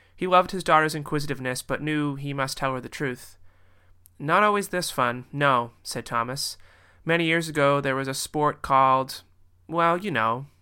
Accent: American